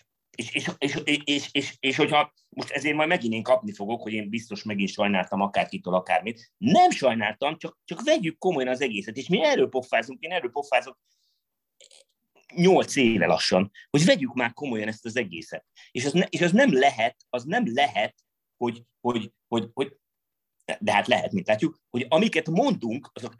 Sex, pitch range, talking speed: male, 115-175 Hz, 175 wpm